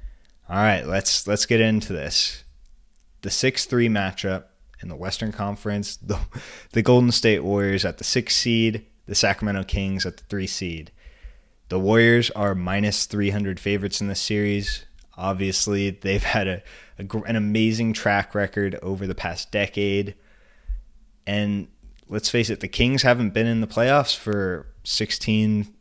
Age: 20-39